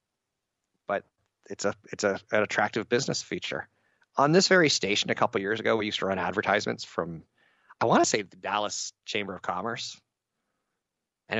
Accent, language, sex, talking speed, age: American, English, male, 175 wpm, 50-69